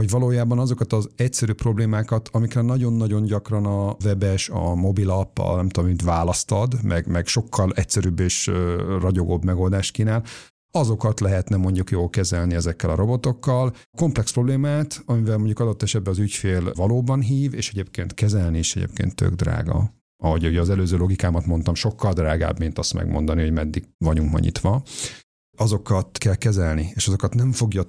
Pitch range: 85-110 Hz